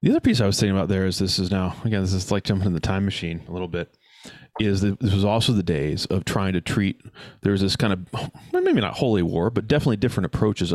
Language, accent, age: English, American, 30-49